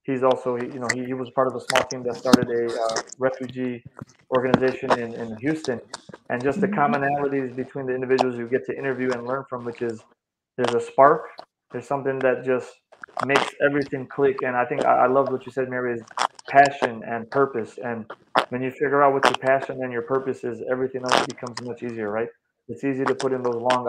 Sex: male